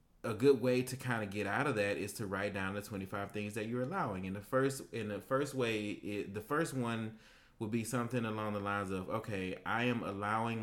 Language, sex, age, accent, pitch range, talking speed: English, male, 30-49, American, 95-110 Hz, 235 wpm